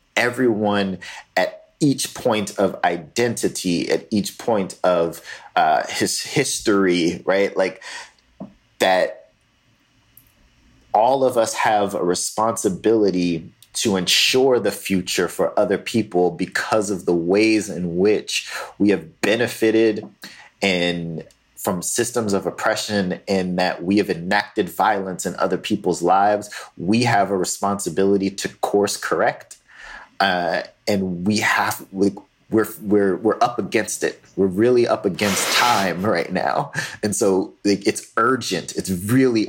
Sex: male